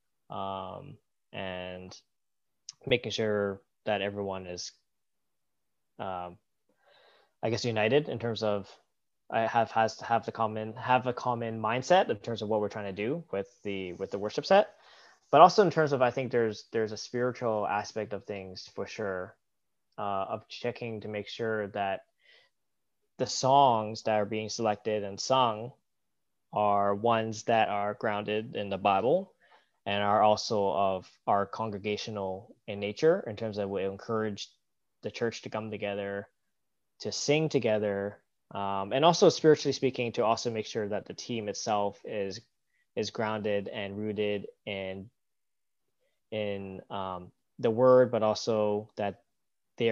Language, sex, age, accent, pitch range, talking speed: English, male, 20-39, American, 100-115 Hz, 150 wpm